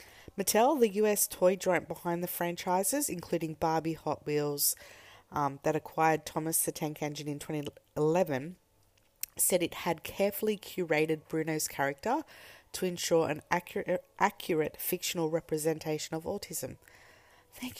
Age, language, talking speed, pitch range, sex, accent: 30-49, English, 130 wpm, 150-180 Hz, female, Australian